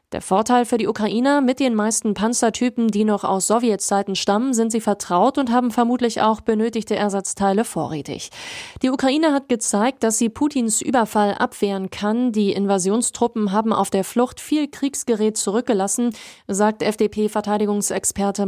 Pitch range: 200-240 Hz